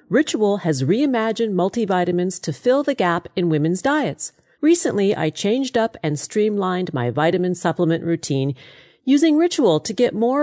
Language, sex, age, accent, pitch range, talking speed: English, female, 40-59, American, 155-235 Hz, 150 wpm